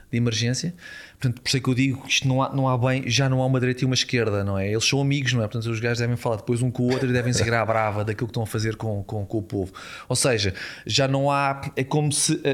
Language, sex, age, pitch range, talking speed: Portuguese, male, 20-39, 120-145 Hz, 305 wpm